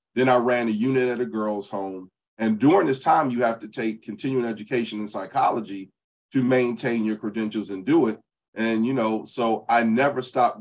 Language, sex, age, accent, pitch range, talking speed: English, male, 40-59, American, 105-130 Hz, 200 wpm